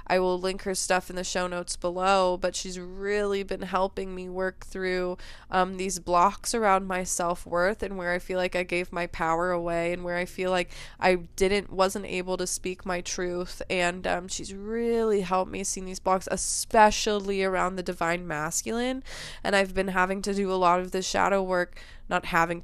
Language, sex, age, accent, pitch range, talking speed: English, female, 20-39, American, 180-195 Hz, 200 wpm